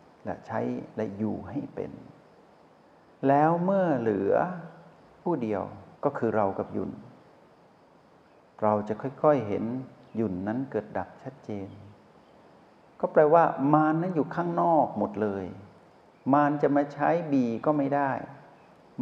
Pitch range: 105-145 Hz